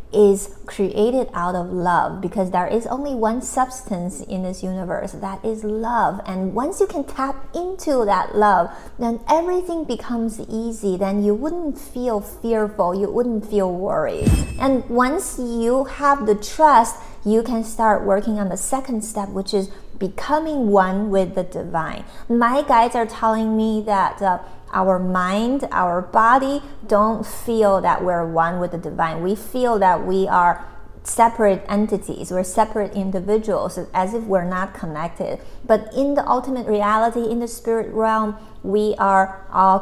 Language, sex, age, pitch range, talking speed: English, female, 30-49, 190-235 Hz, 160 wpm